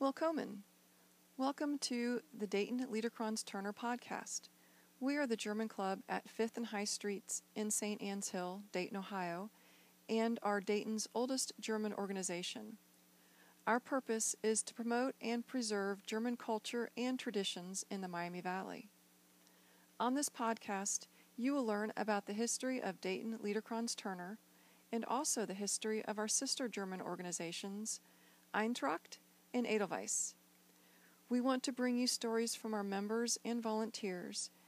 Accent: American